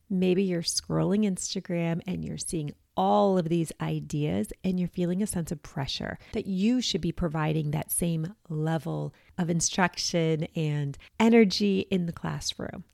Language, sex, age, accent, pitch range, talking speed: English, female, 30-49, American, 165-210 Hz, 155 wpm